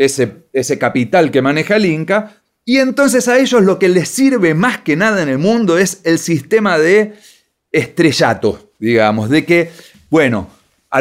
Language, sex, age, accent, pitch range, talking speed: Spanish, male, 40-59, Argentinian, 145-210 Hz, 170 wpm